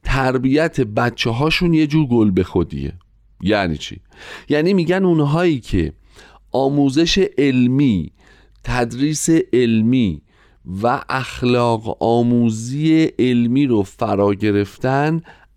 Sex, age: male, 40-59